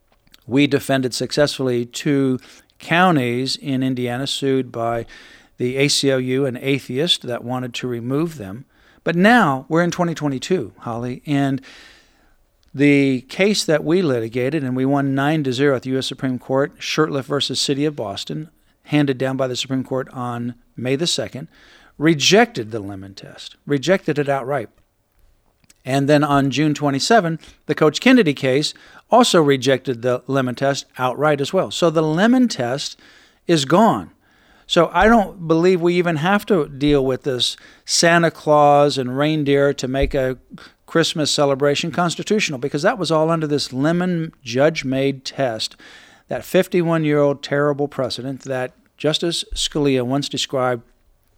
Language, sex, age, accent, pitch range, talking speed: English, male, 50-69, American, 130-155 Hz, 150 wpm